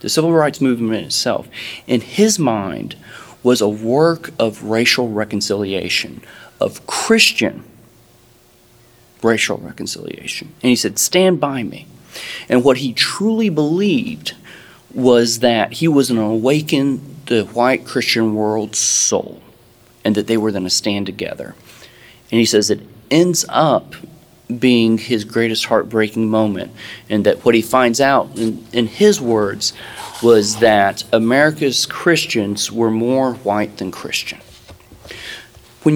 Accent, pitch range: American, 110-135 Hz